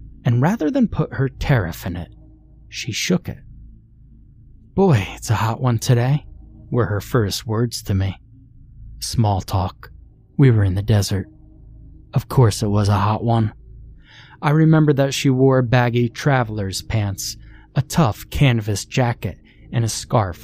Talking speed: 155 wpm